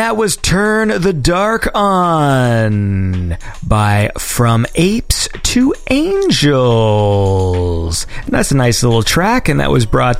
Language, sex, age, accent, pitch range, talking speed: English, male, 30-49, American, 110-160 Hz, 125 wpm